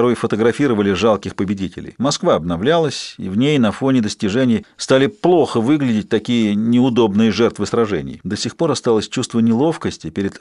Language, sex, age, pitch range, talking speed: Russian, male, 40-59, 110-145 Hz, 150 wpm